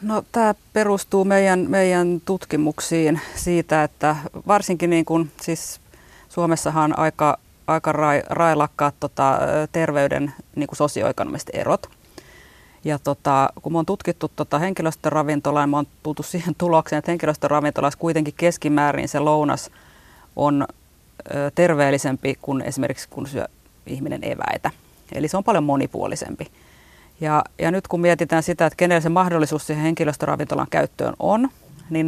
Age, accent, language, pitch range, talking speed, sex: 30-49, native, Finnish, 145-170 Hz, 130 wpm, female